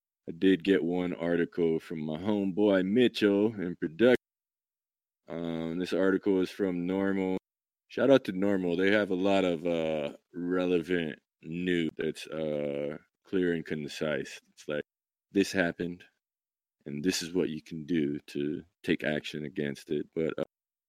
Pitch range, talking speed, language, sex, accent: 85-95 Hz, 145 wpm, English, male, American